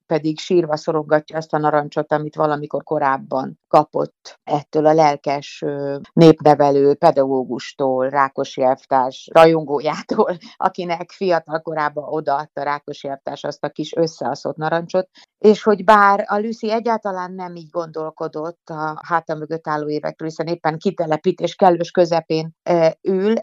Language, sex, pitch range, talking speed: Hungarian, female, 155-185 Hz, 125 wpm